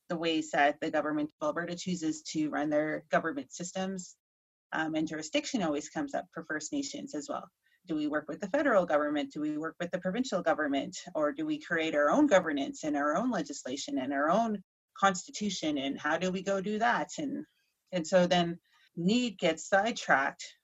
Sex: female